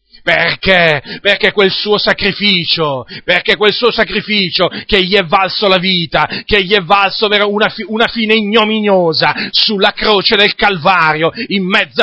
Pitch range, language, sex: 170-210 Hz, Italian, male